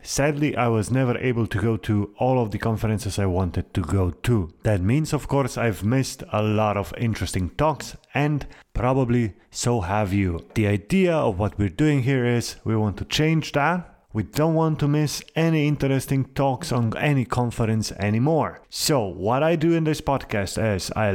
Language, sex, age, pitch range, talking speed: English, male, 30-49, 105-145 Hz, 190 wpm